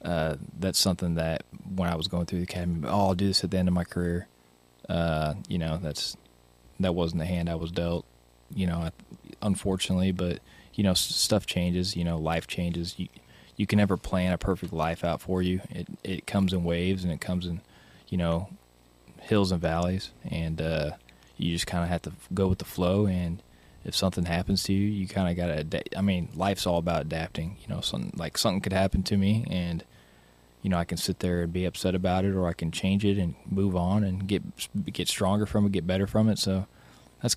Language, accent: English, American